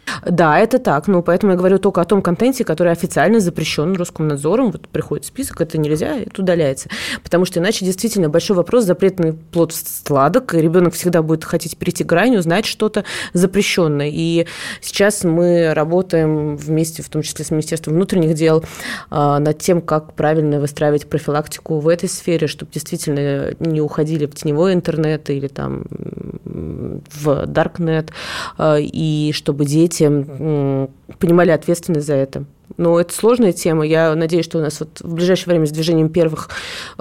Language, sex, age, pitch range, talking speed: Russian, female, 20-39, 150-175 Hz, 160 wpm